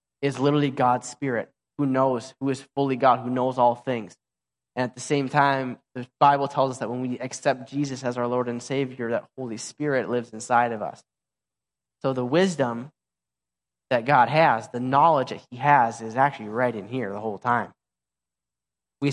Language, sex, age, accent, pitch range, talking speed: English, male, 10-29, American, 115-140 Hz, 190 wpm